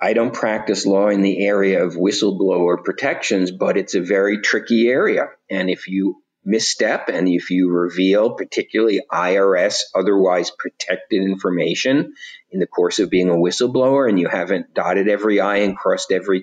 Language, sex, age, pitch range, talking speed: English, male, 50-69, 95-125 Hz, 165 wpm